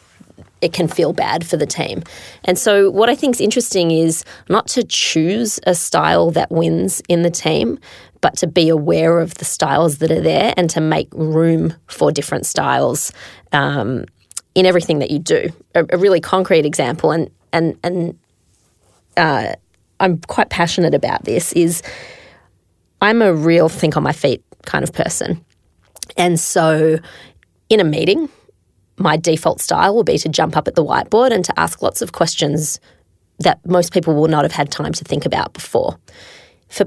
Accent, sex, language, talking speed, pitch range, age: Australian, female, English, 175 wpm, 155-180 Hz, 20-39